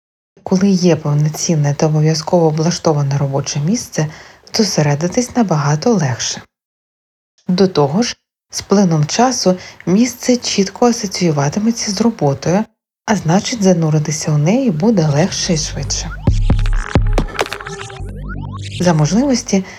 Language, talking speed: Ukrainian, 100 wpm